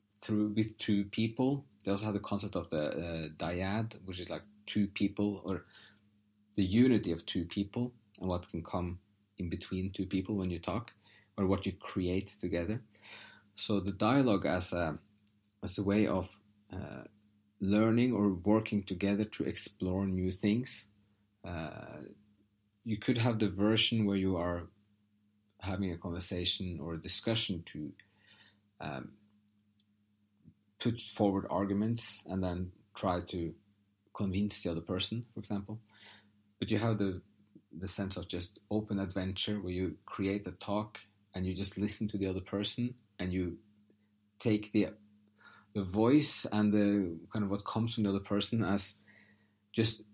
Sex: male